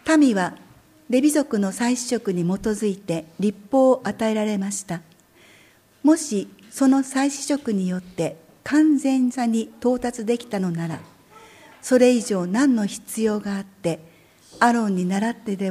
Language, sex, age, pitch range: Japanese, female, 60-79, 180-250 Hz